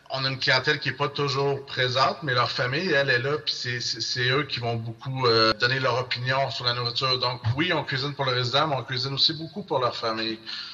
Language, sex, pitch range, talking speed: French, male, 120-140 Hz, 240 wpm